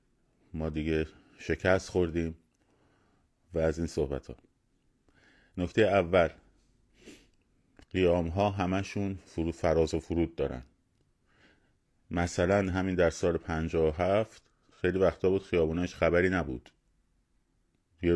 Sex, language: male, Persian